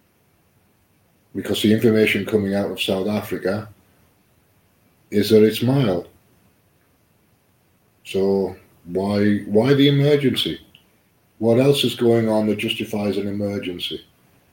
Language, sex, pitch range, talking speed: English, male, 90-105 Hz, 105 wpm